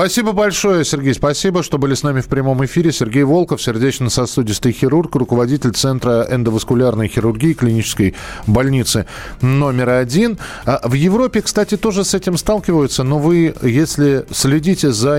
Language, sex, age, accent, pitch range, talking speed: Russian, male, 40-59, native, 115-160 Hz, 140 wpm